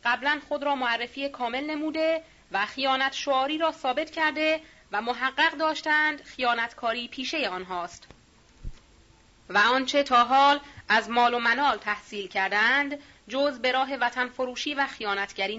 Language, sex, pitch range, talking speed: Persian, female, 215-300 Hz, 130 wpm